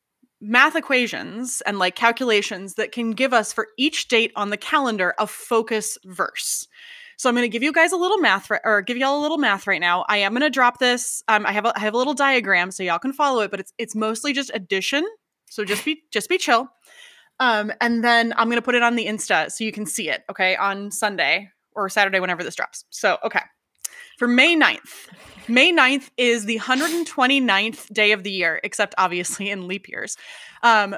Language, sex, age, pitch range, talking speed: English, female, 20-39, 205-260 Hz, 220 wpm